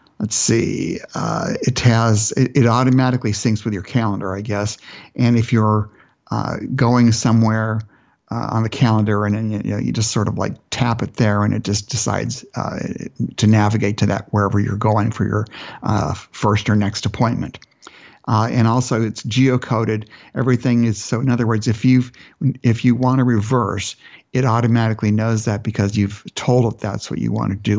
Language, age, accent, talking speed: English, 50-69, American, 190 wpm